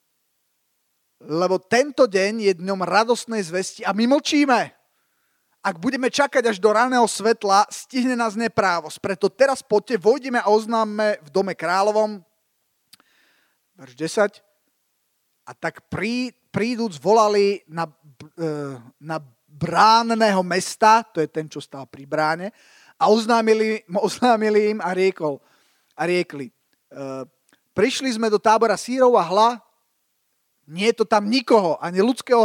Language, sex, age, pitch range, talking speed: Slovak, male, 30-49, 180-230 Hz, 130 wpm